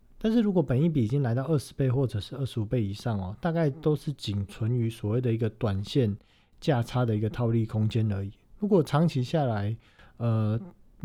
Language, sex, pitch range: Chinese, male, 105-135 Hz